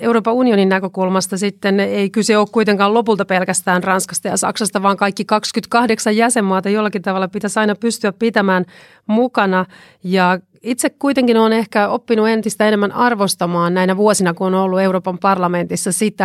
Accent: native